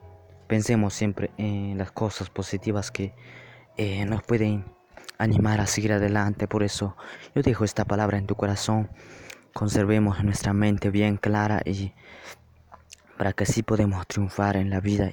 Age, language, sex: 20-39, Spanish, male